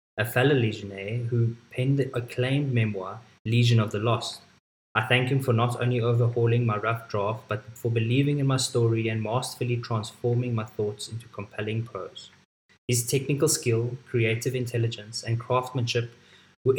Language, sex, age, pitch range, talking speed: English, male, 20-39, 115-130 Hz, 155 wpm